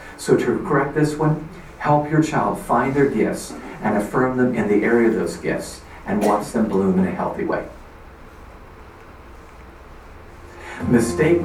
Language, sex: English, male